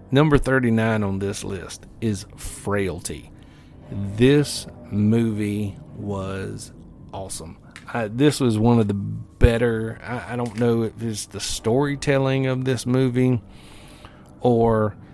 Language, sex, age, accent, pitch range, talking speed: English, male, 40-59, American, 105-130 Hz, 120 wpm